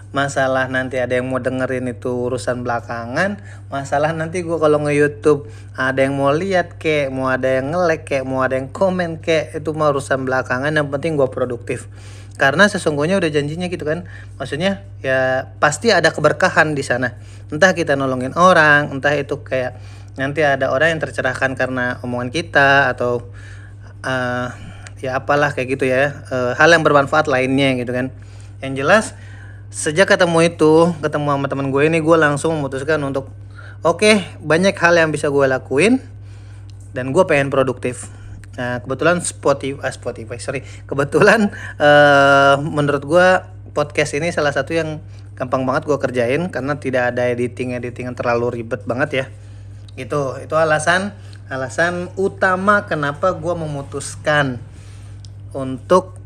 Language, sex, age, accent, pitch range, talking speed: Indonesian, male, 30-49, native, 120-150 Hz, 150 wpm